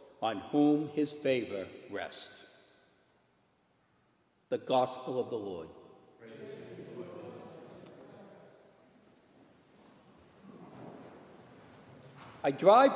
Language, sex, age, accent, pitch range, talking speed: English, male, 50-69, American, 130-160 Hz, 55 wpm